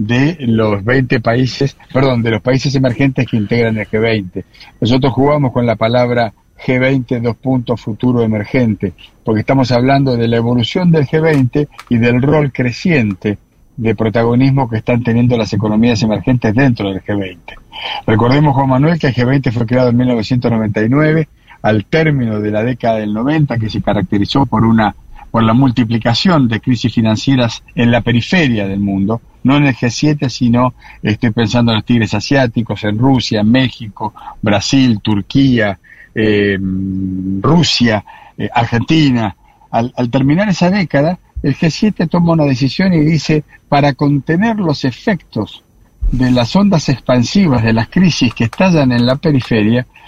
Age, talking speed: 50-69, 155 wpm